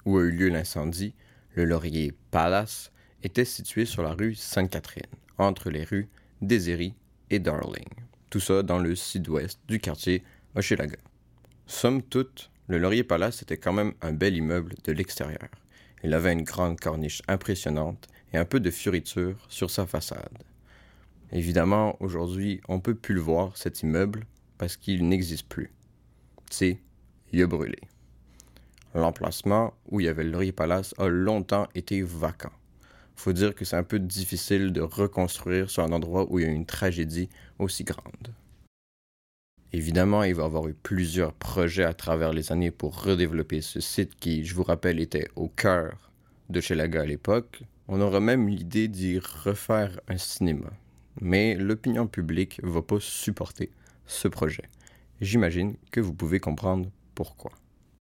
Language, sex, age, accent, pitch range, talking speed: French, male, 30-49, French, 80-100 Hz, 160 wpm